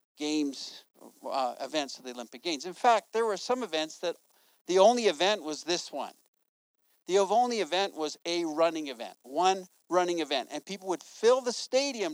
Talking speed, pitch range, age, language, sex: 180 wpm, 155-200 Hz, 50-69, English, male